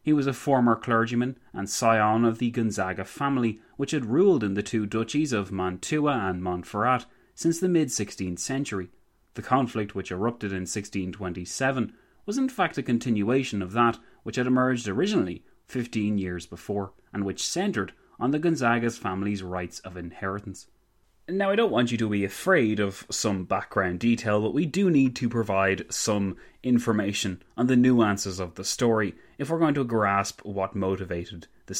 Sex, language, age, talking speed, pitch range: male, English, 30-49, 170 wpm, 95-125 Hz